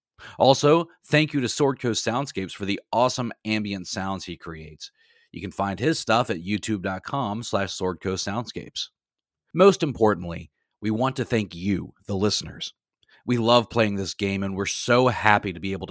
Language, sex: English, male